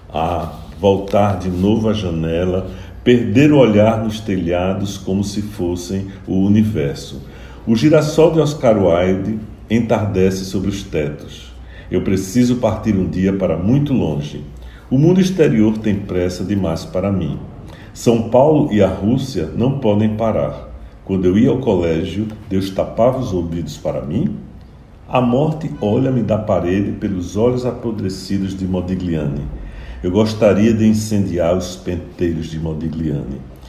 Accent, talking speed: Brazilian, 140 wpm